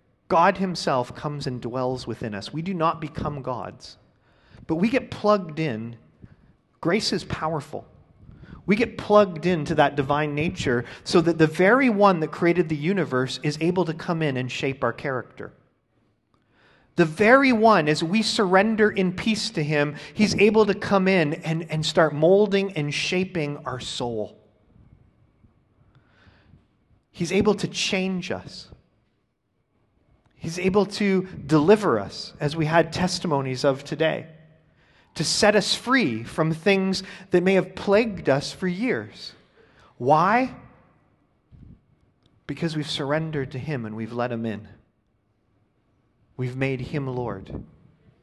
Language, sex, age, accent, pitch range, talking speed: English, male, 40-59, American, 125-190 Hz, 140 wpm